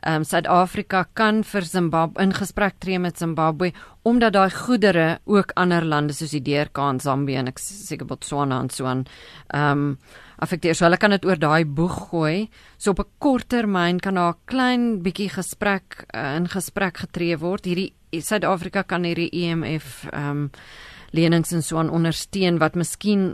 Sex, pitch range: female, 160-200 Hz